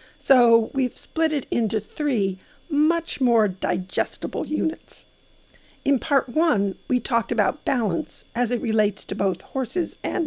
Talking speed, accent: 140 wpm, American